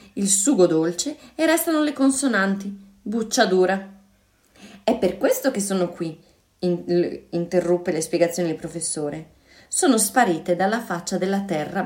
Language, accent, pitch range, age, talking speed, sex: Italian, native, 170-225 Hz, 20-39, 130 wpm, female